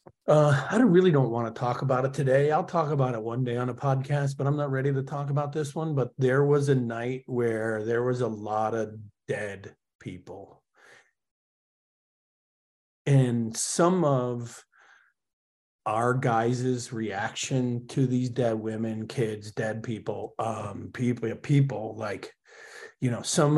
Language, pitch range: English, 115-140 Hz